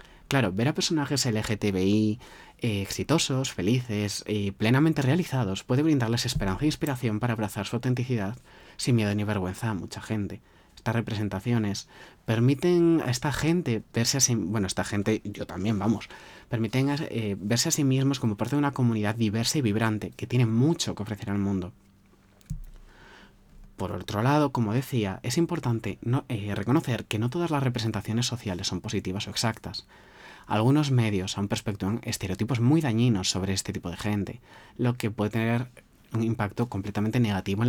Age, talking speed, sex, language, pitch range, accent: 30-49, 155 wpm, male, Spanish, 100-125 Hz, Spanish